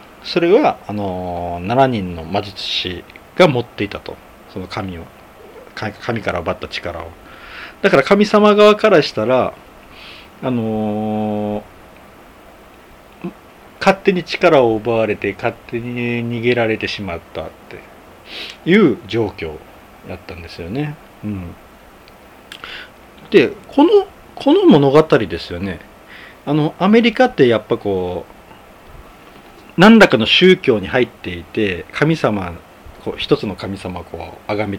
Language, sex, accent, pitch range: Japanese, male, native, 100-160 Hz